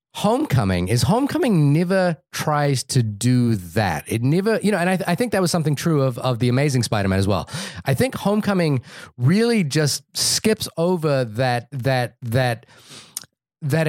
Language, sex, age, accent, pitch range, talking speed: English, male, 30-49, American, 120-165 Hz, 175 wpm